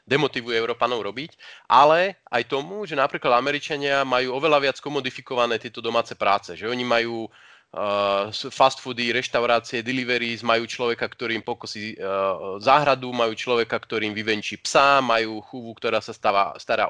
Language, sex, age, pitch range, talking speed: Slovak, male, 20-39, 115-135 Hz, 145 wpm